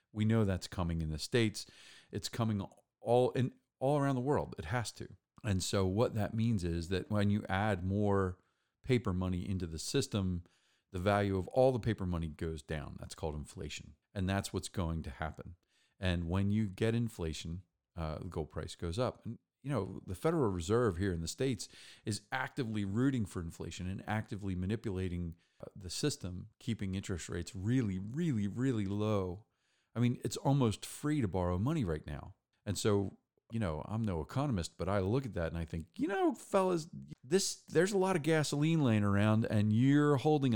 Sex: male